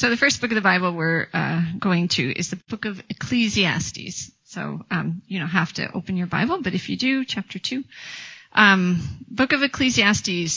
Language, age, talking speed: English, 30-49, 200 wpm